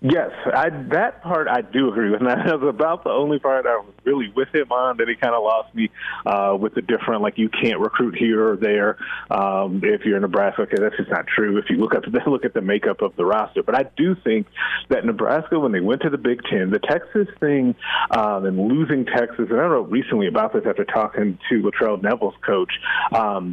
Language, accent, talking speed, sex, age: English, American, 235 wpm, male, 30-49